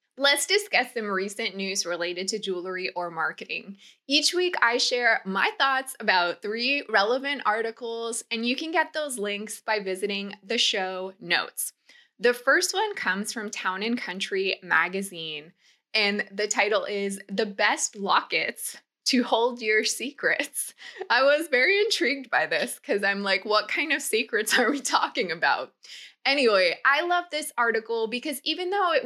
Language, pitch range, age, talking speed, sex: English, 195-255 Hz, 20-39, 155 wpm, female